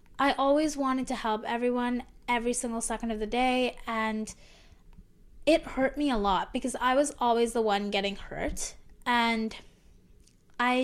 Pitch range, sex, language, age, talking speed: 215-255 Hz, female, English, 10-29, 155 wpm